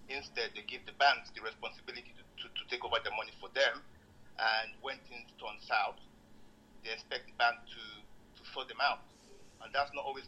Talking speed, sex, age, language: 195 wpm, male, 50-69, English